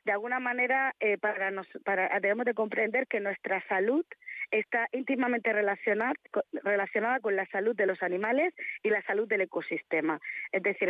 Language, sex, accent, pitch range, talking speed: Spanish, female, Spanish, 195-245 Hz, 165 wpm